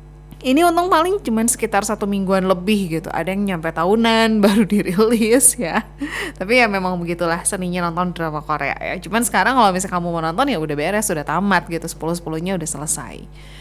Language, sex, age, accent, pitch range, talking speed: Indonesian, female, 20-39, native, 180-245 Hz, 185 wpm